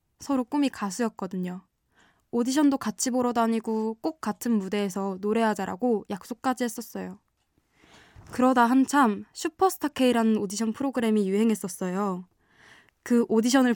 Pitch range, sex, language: 205-255 Hz, female, Korean